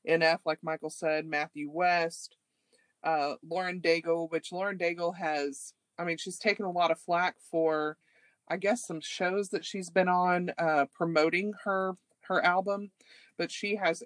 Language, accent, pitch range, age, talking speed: English, American, 155-180 Hz, 30-49, 160 wpm